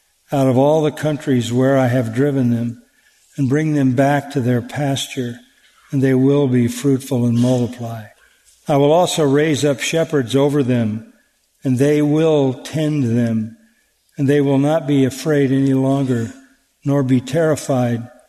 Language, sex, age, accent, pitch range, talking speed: English, male, 50-69, American, 130-150 Hz, 160 wpm